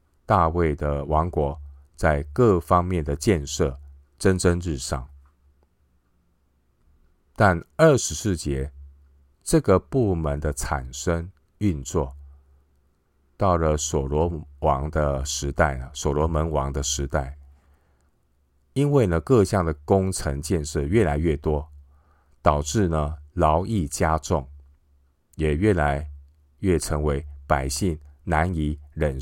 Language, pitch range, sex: Chinese, 70-85 Hz, male